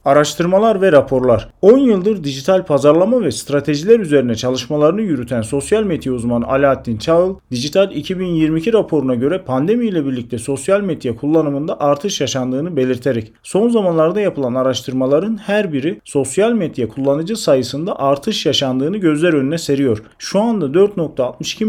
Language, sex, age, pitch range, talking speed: Turkish, male, 40-59, 130-185 Hz, 130 wpm